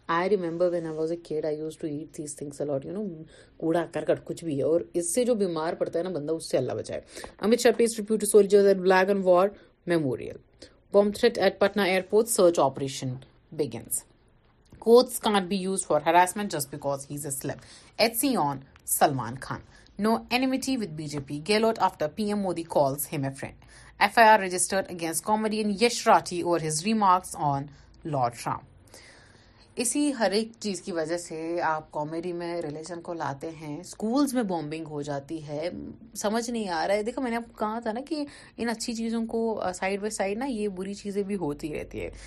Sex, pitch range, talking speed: female, 155-210 Hz, 195 wpm